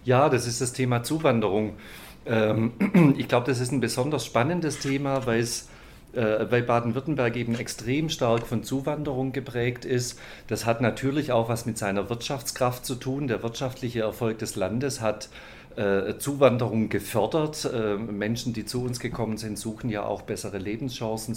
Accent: German